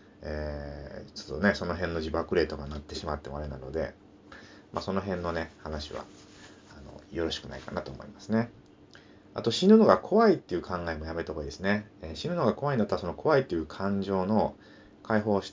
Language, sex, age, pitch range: Japanese, male, 30-49, 75-100 Hz